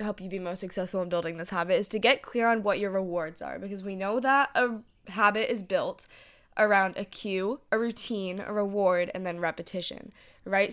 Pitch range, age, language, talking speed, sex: 185-220 Hz, 10-29, English, 205 wpm, female